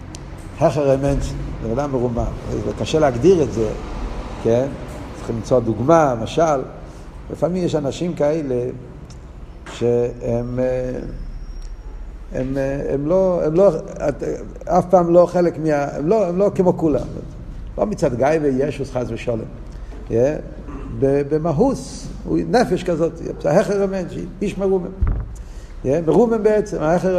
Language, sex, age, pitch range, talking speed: Hebrew, male, 50-69, 125-185 Hz, 100 wpm